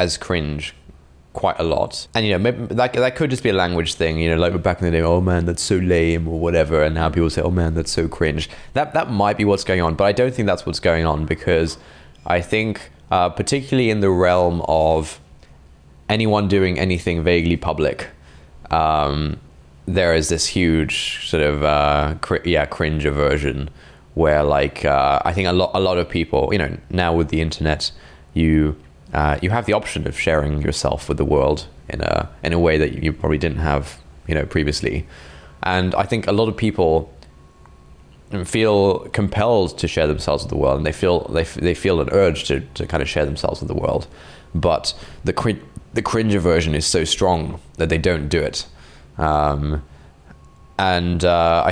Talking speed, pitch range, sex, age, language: 200 wpm, 75-90 Hz, male, 20-39, English